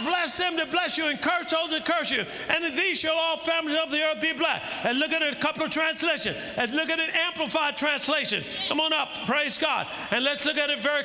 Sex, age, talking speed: male, 50-69, 255 wpm